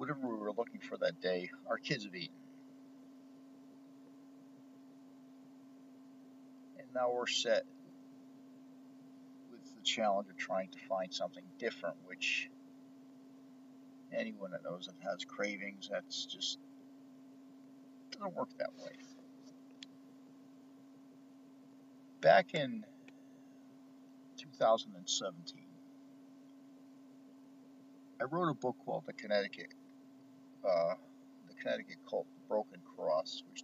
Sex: male